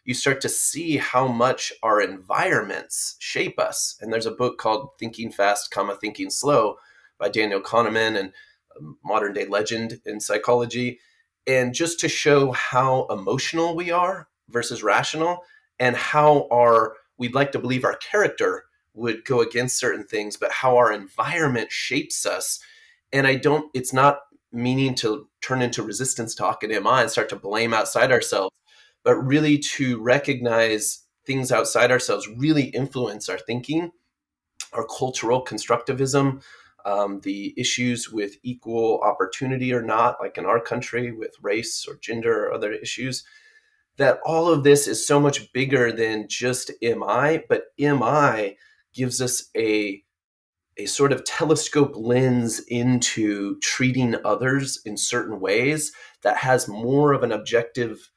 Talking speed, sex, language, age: 150 wpm, male, English, 30-49